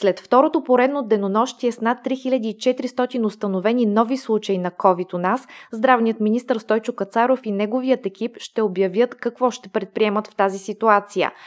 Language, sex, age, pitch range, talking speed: Bulgarian, female, 20-39, 195-240 Hz, 150 wpm